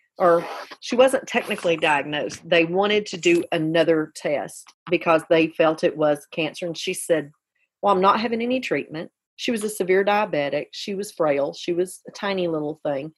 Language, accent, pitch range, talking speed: English, American, 165-205 Hz, 180 wpm